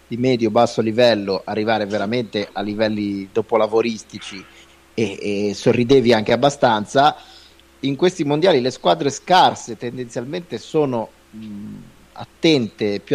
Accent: native